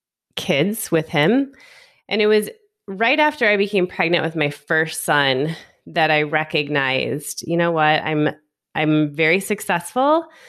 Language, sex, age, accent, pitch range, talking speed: English, female, 20-39, American, 145-195 Hz, 145 wpm